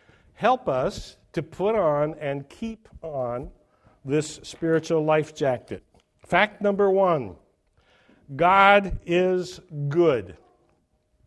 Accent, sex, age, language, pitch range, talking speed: American, male, 60-79, English, 135-180 Hz, 95 wpm